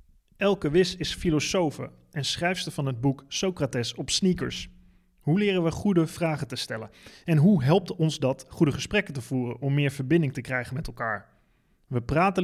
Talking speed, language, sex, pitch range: 180 wpm, Dutch, male, 125-160 Hz